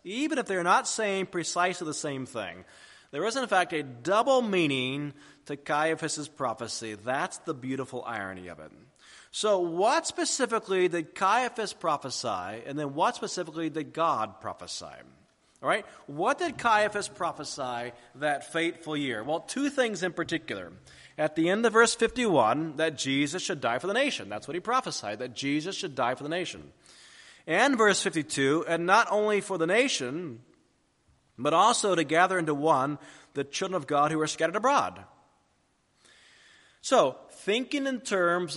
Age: 30-49